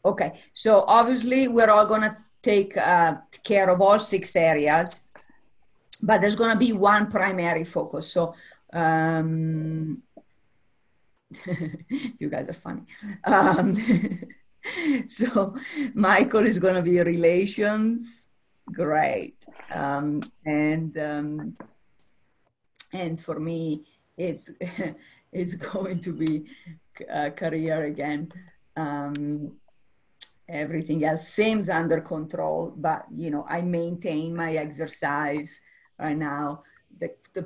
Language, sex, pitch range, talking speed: English, female, 160-210 Hz, 105 wpm